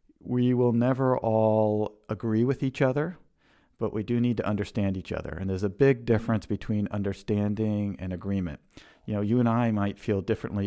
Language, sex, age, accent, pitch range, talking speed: English, male, 50-69, American, 100-115 Hz, 185 wpm